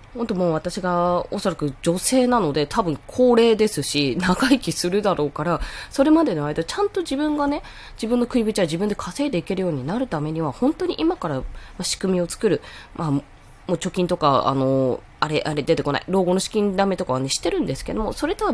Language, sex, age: Japanese, female, 20-39